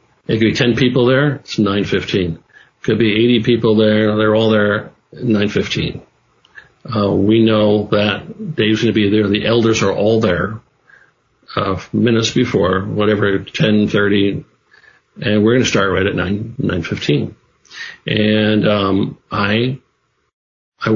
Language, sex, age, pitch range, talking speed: English, male, 50-69, 105-115 Hz, 150 wpm